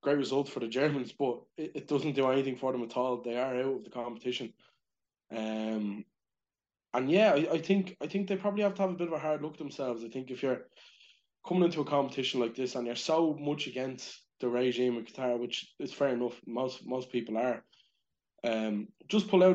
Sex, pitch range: male, 120-145 Hz